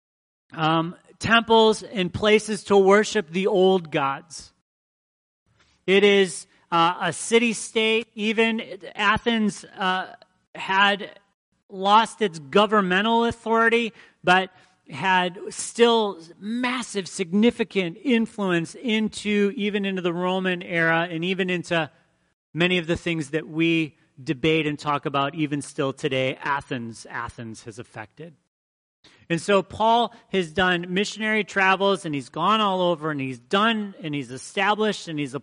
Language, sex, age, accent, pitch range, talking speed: English, male, 40-59, American, 160-205 Hz, 125 wpm